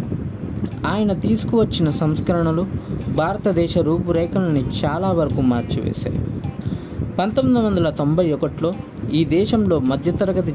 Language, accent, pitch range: Telugu, native, 125-175 Hz